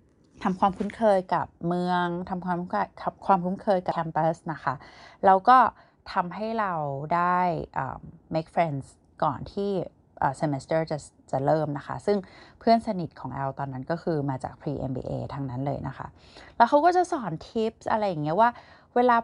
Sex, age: female, 20-39